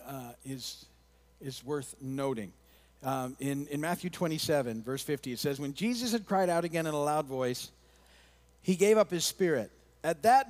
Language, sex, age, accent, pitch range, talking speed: English, male, 50-69, American, 115-170 Hz, 175 wpm